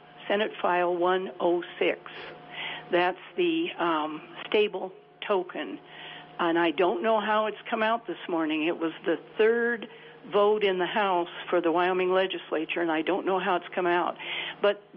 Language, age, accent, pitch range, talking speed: English, 60-79, American, 185-295 Hz, 155 wpm